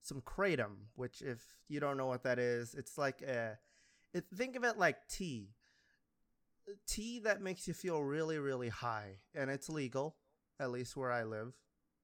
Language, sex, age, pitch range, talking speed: English, male, 20-39, 120-175 Hz, 180 wpm